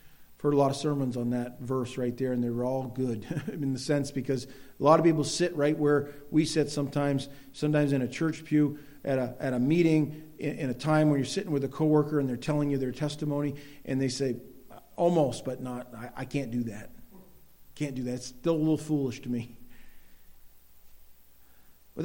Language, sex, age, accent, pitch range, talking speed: English, male, 50-69, American, 130-190 Hz, 210 wpm